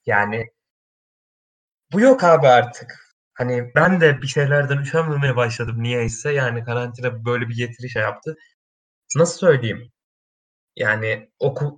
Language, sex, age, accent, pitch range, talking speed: Turkish, male, 20-39, native, 115-155 Hz, 115 wpm